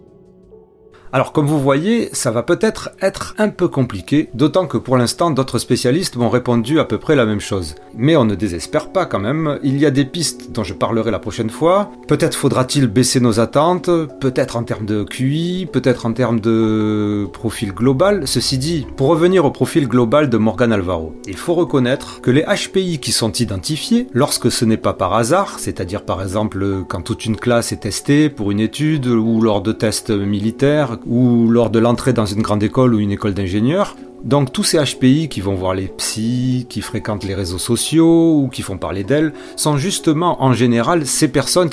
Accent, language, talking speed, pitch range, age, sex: French, French, 200 wpm, 110-150 Hz, 30-49, male